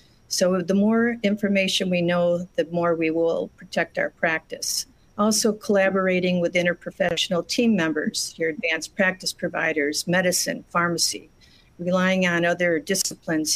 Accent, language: American, English